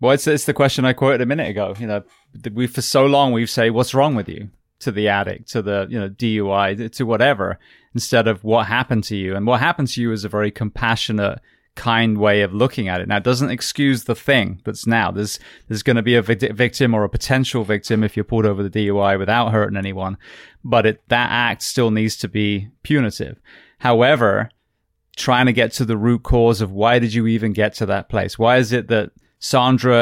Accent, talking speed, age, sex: British, 230 wpm, 20-39, male